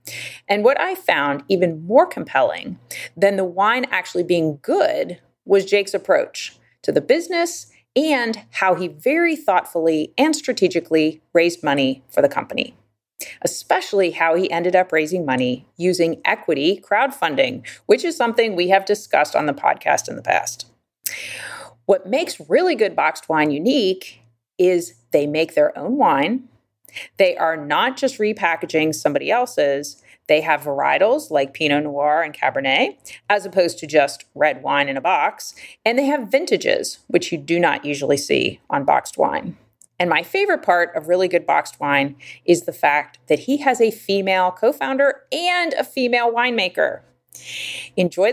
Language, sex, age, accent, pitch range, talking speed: English, female, 30-49, American, 150-240 Hz, 155 wpm